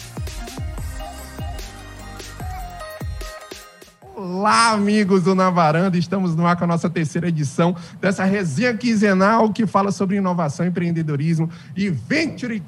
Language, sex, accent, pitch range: Portuguese, male, Brazilian, 145-190 Hz